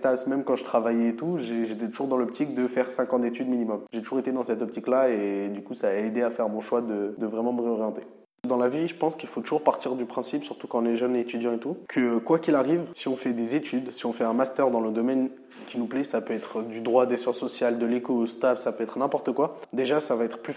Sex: male